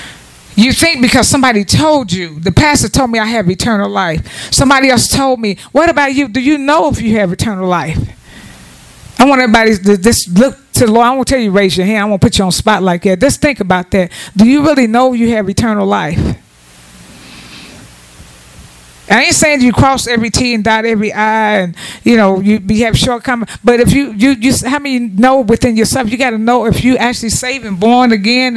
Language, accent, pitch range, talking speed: English, American, 215-285 Hz, 220 wpm